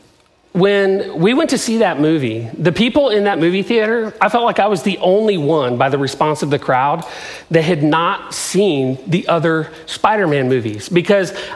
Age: 40-59